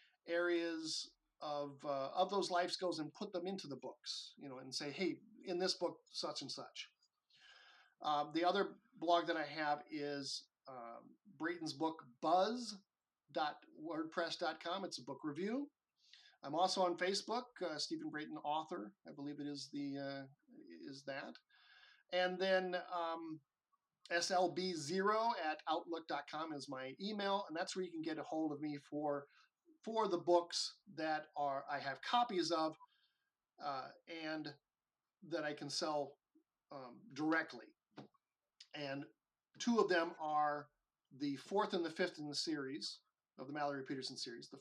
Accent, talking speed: American, 150 wpm